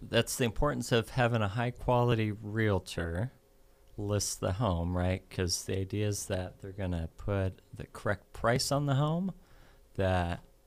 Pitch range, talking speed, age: 95-120 Hz, 165 wpm, 30-49